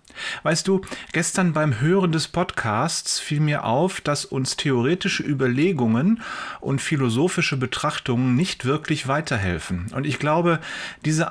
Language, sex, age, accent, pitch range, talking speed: German, male, 30-49, German, 125-170 Hz, 125 wpm